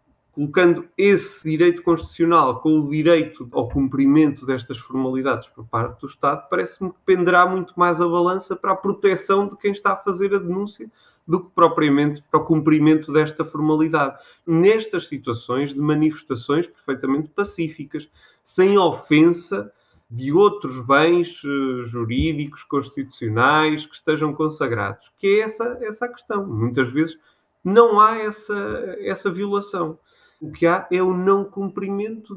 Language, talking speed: Portuguese, 140 wpm